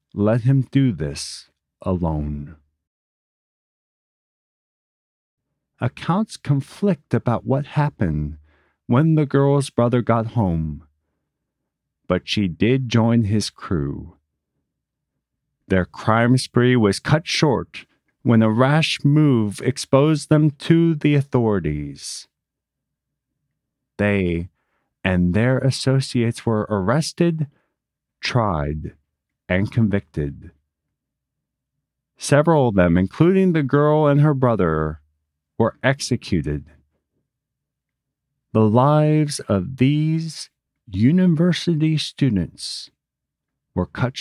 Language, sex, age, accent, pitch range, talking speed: English, male, 40-59, American, 85-145 Hz, 90 wpm